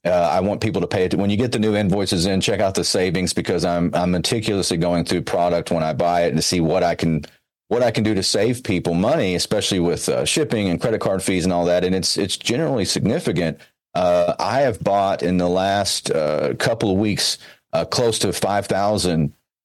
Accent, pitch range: American, 85-100 Hz